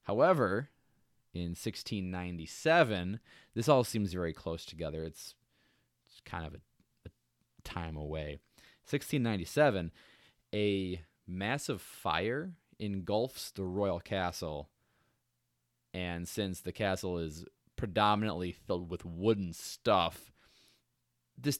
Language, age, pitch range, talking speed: English, 20-39, 85-105 Hz, 100 wpm